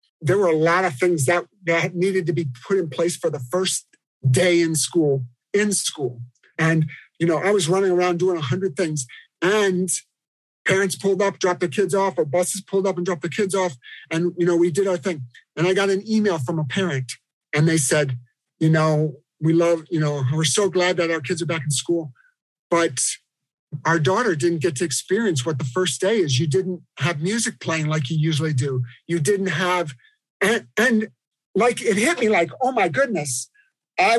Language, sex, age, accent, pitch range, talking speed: English, male, 50-69, American, 160-205 Hz, 210 wpm